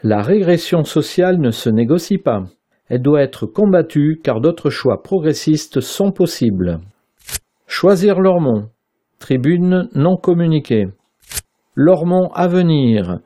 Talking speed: 110 wpm